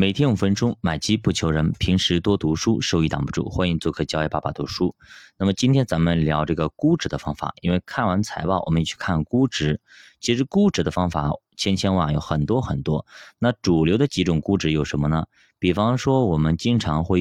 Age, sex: 20-39, male